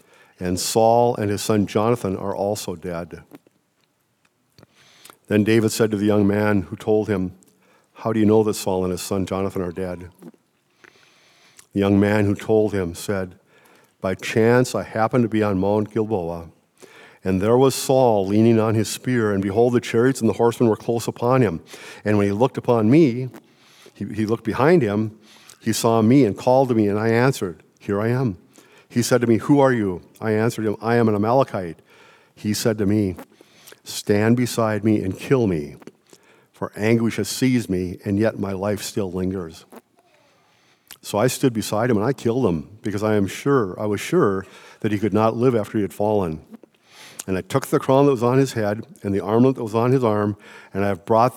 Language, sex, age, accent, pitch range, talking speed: English, male, 50-69, American, 100-115 Hz, 200 wpm